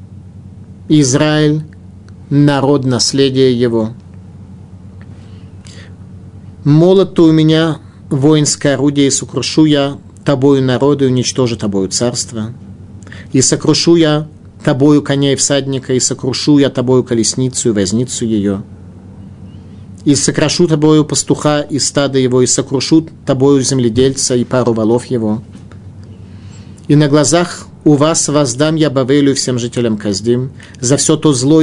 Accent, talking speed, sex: native, 120 wpm, male